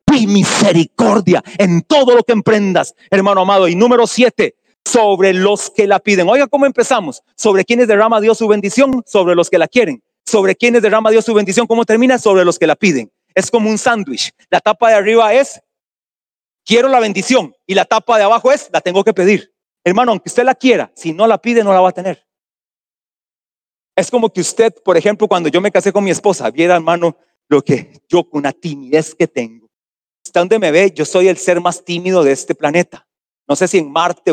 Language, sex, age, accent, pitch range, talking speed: Spanish, male, 40-59, Mexican, 175-225 Hz, 210 wpm